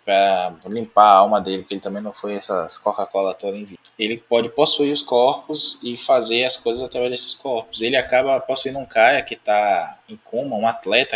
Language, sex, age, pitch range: Portuguese, male, 20-39, 100-135 Hz